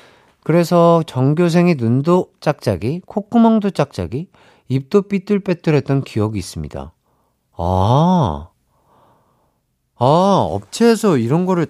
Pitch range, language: 100-165 Hz, Korean